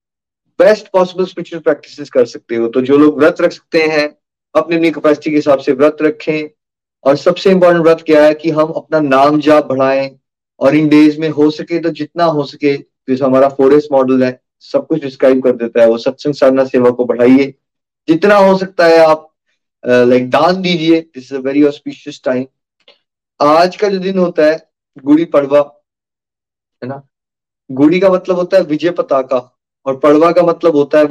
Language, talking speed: Hindi, 195 wpm